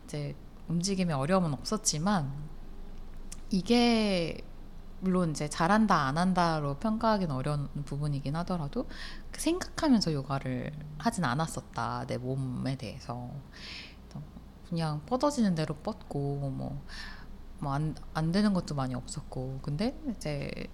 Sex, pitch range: female, 140-205 Hz